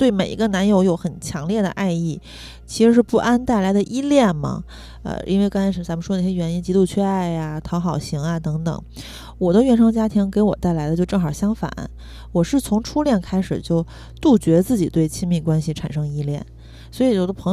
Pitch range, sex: 165-225 Hz, female